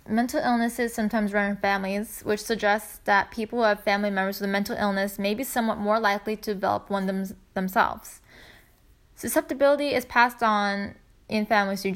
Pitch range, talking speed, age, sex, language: 200-225 Hz, 170 wpm, 10-29, female, English